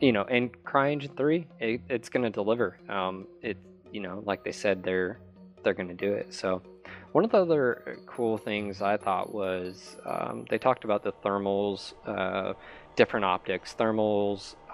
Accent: American